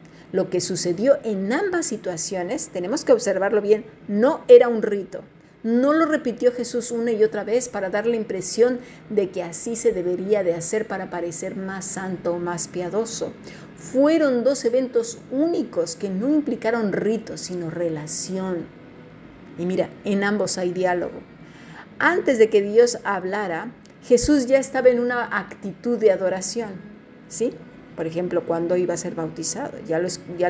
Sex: female